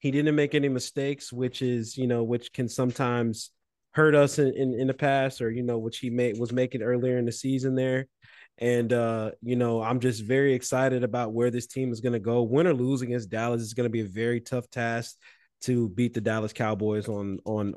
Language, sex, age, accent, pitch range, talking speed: English, male, 20-39, American, 115-140 Hz, 230 wpm